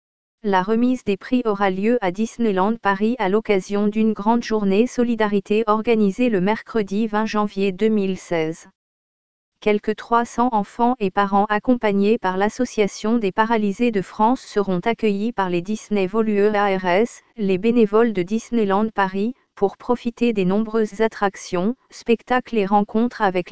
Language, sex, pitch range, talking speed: French, female, 195-225 Hz, 140 wpm